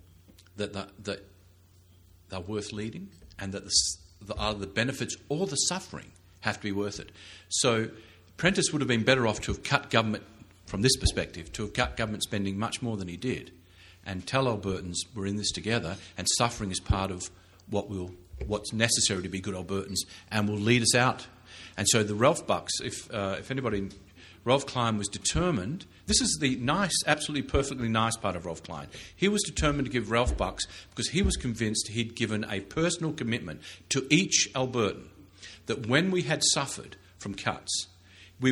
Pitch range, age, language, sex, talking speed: 95-120 Hz, 50-69, English, male, 190 wpm